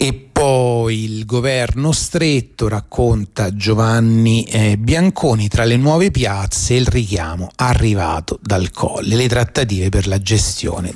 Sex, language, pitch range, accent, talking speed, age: male, Italian, 90-115 Hz, native, 120 wpm, 30-49